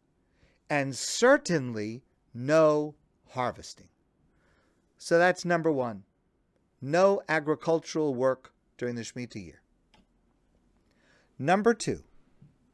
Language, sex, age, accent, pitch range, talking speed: English, male, 50-69, American, 130-185 Hz, 80 wpm